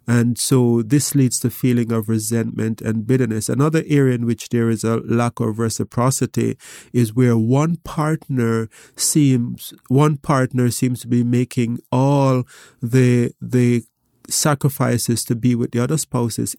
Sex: male